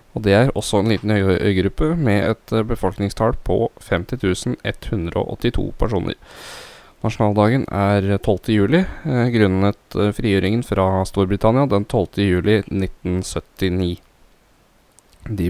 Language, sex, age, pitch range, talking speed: English, male, 10-29, 95-105 Hz, 115 wpm